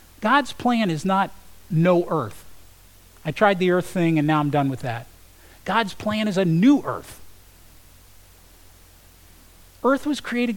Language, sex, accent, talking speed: English, male, American, 150 wpm